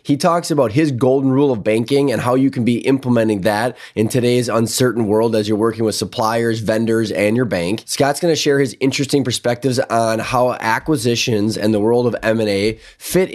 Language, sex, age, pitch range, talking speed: English, male, 20-39, 110-140 Hz, 200 wpm